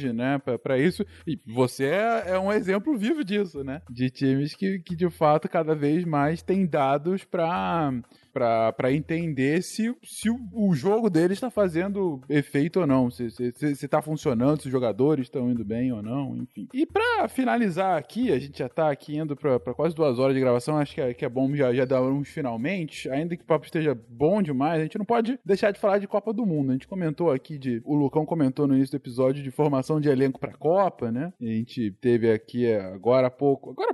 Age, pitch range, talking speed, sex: 20-39, 135-195 Hz, 225 wpm, male